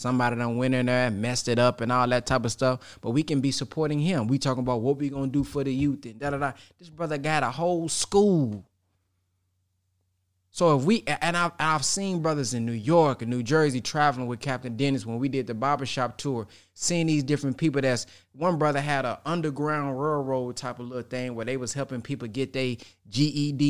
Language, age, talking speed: English, 20-39, 220 wpm